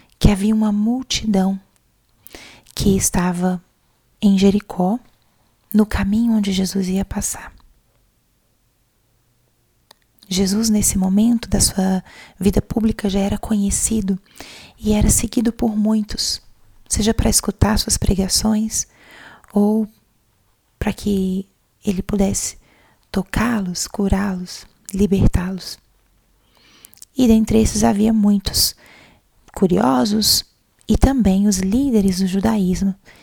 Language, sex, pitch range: Portuguese, female, 190-220 Hz